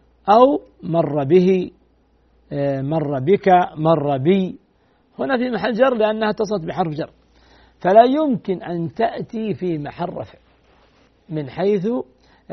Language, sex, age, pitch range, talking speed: Arabic, male, 50-69, 150-200 Hz, 115 wpm